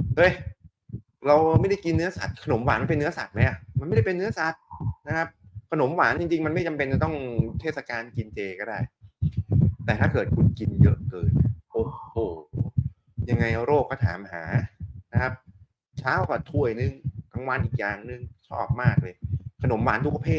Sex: male